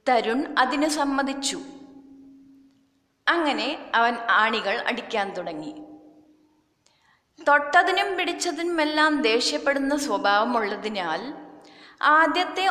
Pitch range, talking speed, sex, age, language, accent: 225-300 Hz, 55 wpm, female, 30-49, Malayalam, native